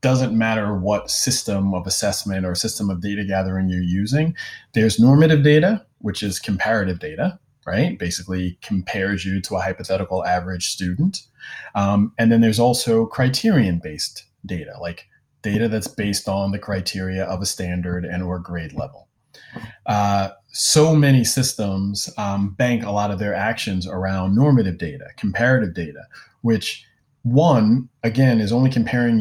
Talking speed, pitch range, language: 150 wpm, 95-120 Hz, English